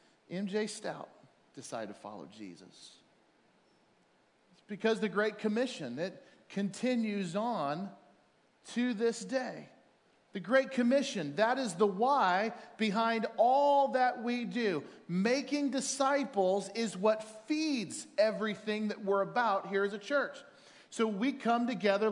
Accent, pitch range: American, 200-255 Hz